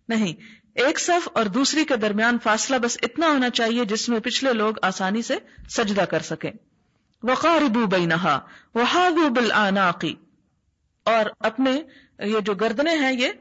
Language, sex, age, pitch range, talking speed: Urdu, female, 40-59, 195-255 Hz, 145 wpm